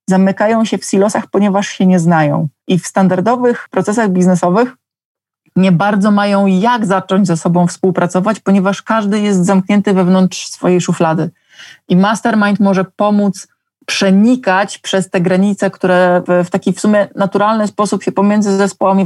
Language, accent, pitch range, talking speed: Polish, native, 180-205 Hz, 145 wpm